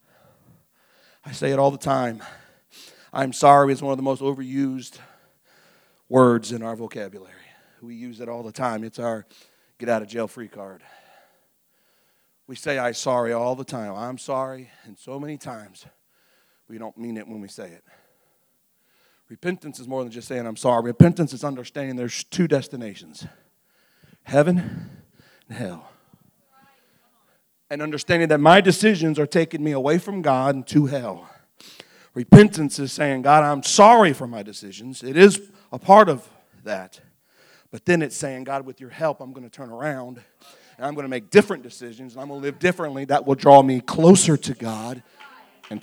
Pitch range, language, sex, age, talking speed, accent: 120-150 Hz, English, male, 40-59, 175 wpm, American